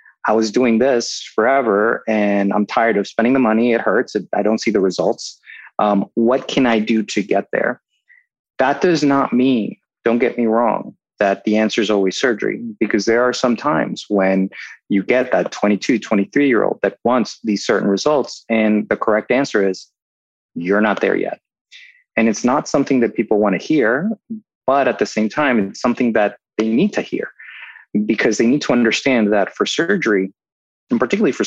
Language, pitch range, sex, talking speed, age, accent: English, 100-120 Hz, male, 185 wpm, 30-49, American